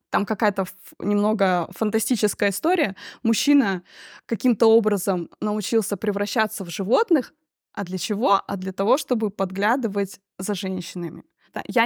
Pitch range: 200-255 Hz